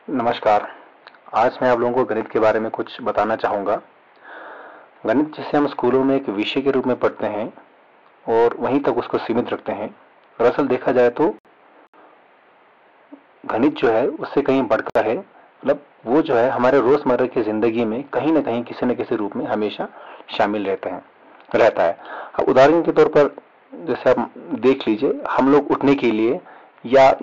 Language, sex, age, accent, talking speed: Hindi, male, 40-59, native, 175 wpm